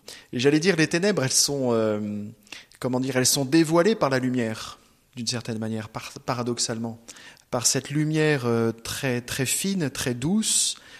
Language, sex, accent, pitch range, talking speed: French, male, French, 120-155 Hz, 165 wpm